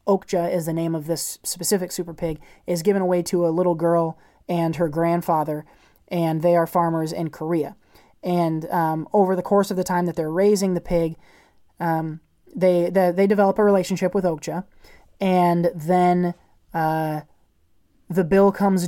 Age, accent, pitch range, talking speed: 20-39, American, 165-190 Hz, 170 wpm